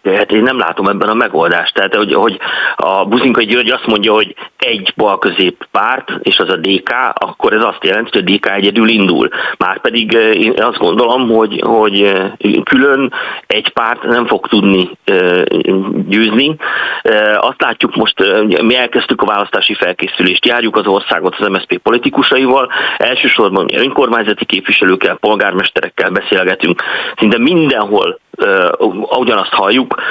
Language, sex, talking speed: Hungarian, male, 140 wpm